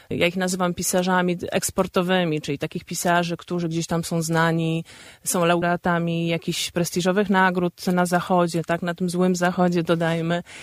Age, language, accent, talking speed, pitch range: 20-39, Polish, native, 145 wpm, 170-205 Hz